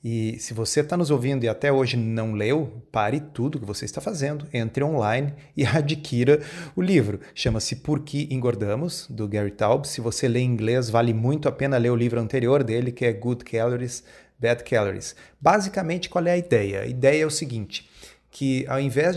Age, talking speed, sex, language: 30-49, 195 wpm, male, Portuguese